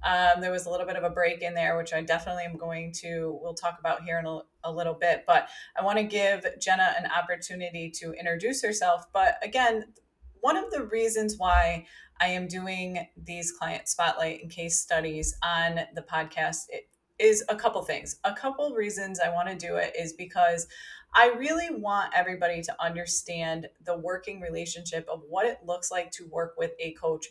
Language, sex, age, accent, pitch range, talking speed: English, female, 20-39, American, 165-200 Hz, 200 wpm